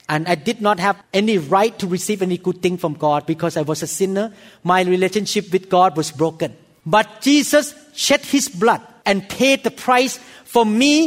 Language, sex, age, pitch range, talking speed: English, male, 40-59, 195-275 Hz, 195 wpm